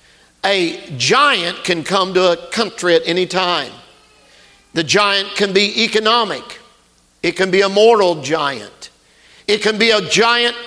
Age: 50-69